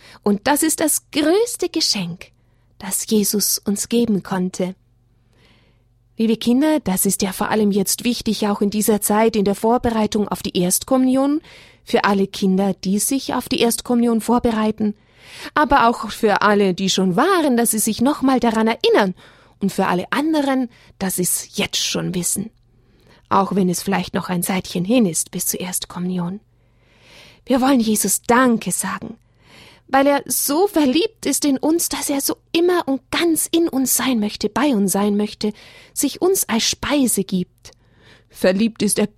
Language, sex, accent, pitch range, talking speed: German, female, German, 180-235 Hz, 165 wpm